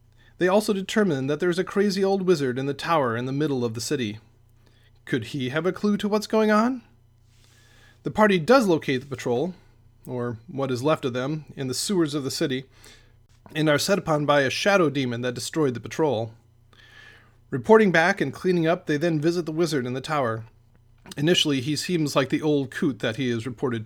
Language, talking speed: English, 205 wpm